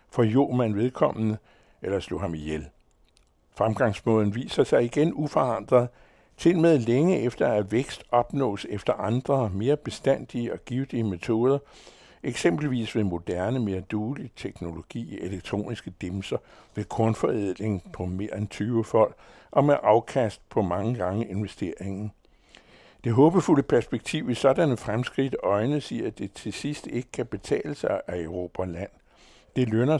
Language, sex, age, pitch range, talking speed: Danish, male, 60-79, 100-130 Hz, 140 wpm